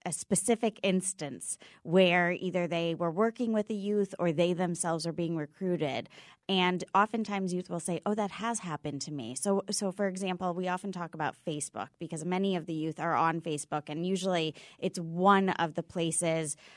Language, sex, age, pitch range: English, female, 20-39, 170-225 Hz